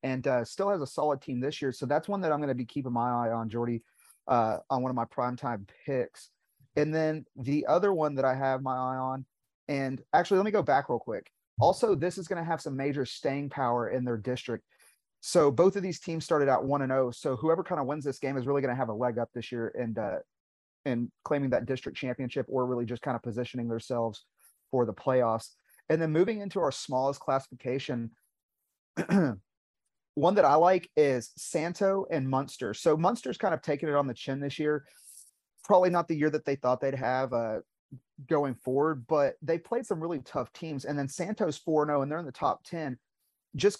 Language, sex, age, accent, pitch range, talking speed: English, male, 30-49, American, 125-160 Hz, 220 wpm